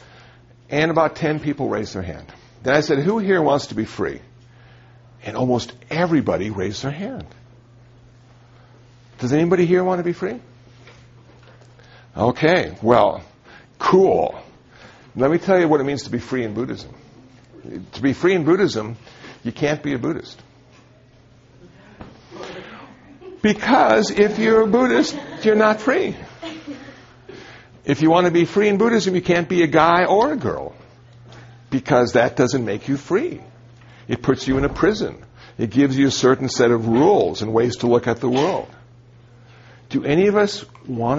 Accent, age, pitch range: American, 60-79, 120-160 Hz